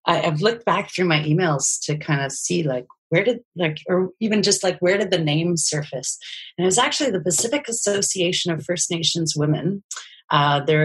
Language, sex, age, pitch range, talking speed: English, female, 30-49, 150-185 Hz, 200 wpm